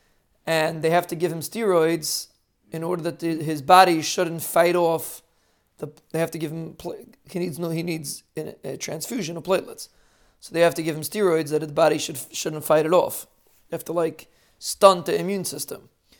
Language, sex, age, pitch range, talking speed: English, male, 30-49, 160-190 Hz, 200 wpm